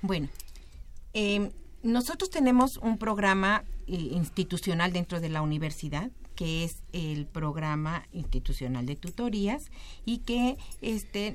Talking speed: 115 wpm